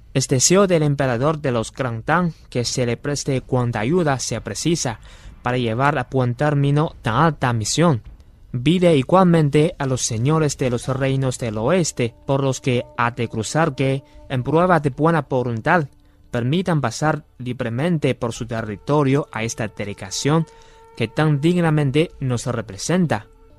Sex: male